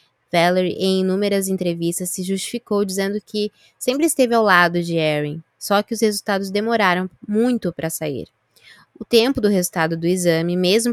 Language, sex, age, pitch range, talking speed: Portuguese, female, 20-39, 175-215 Hz, 160 wpm